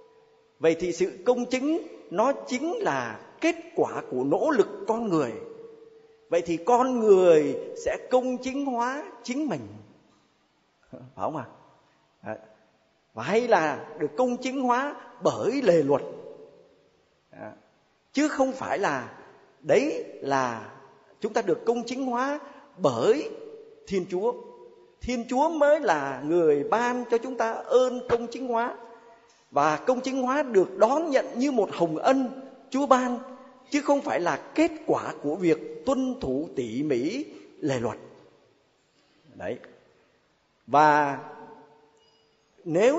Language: Vietnamese